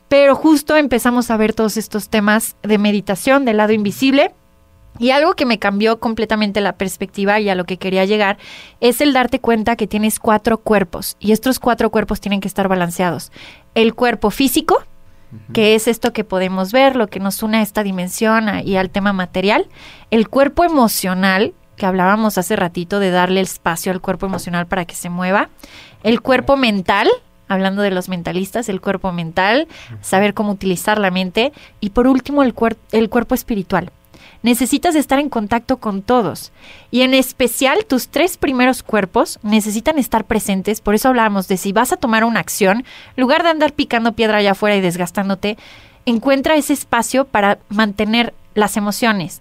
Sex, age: female, 20-39